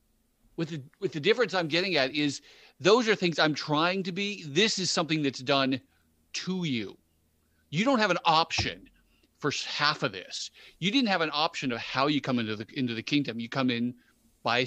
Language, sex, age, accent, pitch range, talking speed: English, male, 40-59, American, 125-170 Hz, 205 wpm